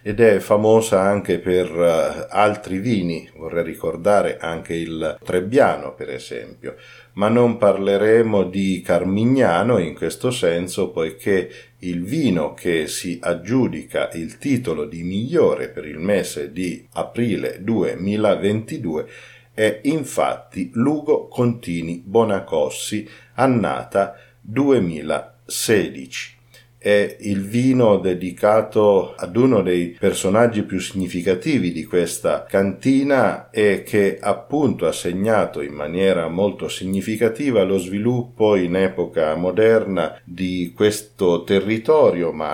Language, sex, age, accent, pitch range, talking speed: Italian, male, 50-69, native, 90-115 Hz, 105 wpm